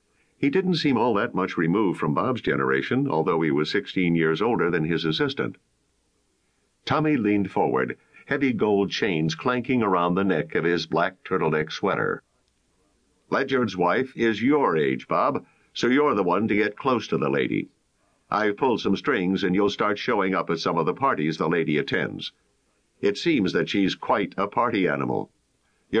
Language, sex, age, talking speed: English, male, 60-79, 175 wpm